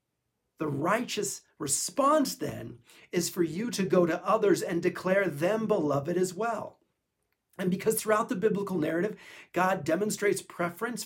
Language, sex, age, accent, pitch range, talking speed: English, male, 40-59, American, 145-200 Hz, 140 wpm